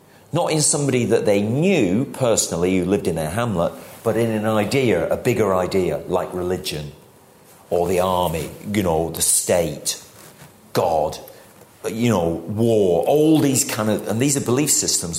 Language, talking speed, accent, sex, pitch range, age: English, 160 wpm, British, male, 90-120 Hz, 40-59